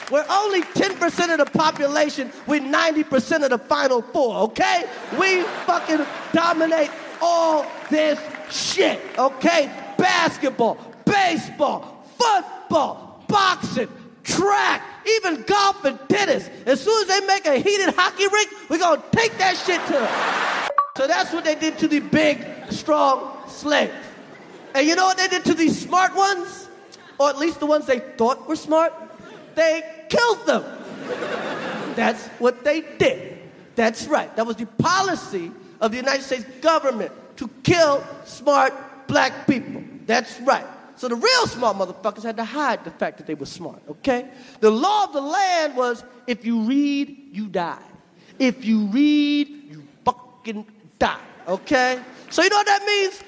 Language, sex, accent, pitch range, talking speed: English, male, American, 255-360 Hz, 155 wpm